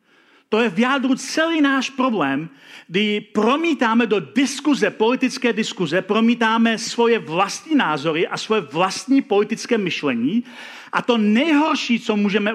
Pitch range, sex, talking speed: 185-260 Hz, male, 130 wpm